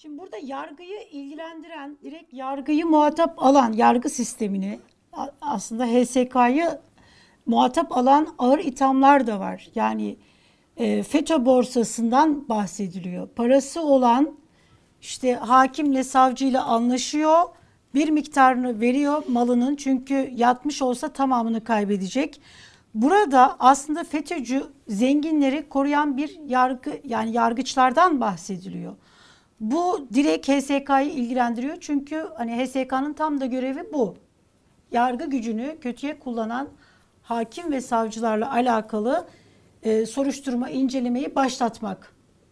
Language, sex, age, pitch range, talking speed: Turkish, female, 60-79, 240-295 Hz, 100 wpm